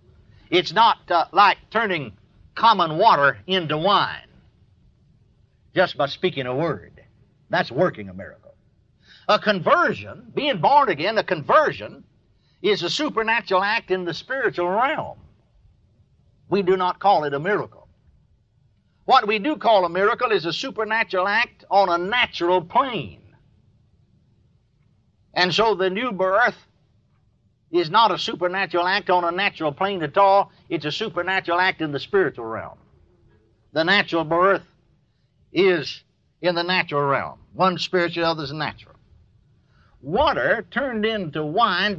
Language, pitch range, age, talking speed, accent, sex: English, 135-195 Hz, 60-79, 135 wpm, American, male